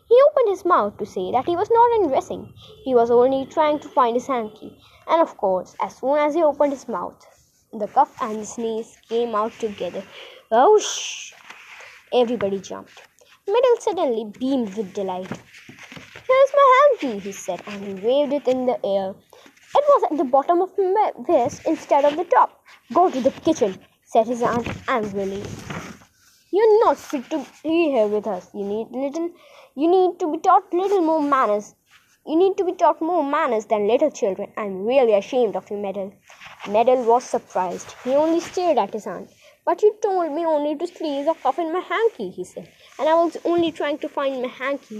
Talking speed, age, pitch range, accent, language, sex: 195 wpm, 20-39, 230-345 Hz, native, Hindi, female